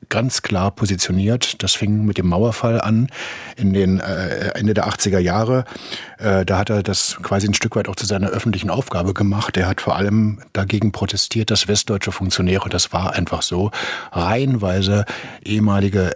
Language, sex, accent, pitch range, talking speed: German, male, German, 95-110 Hz, 170 wpm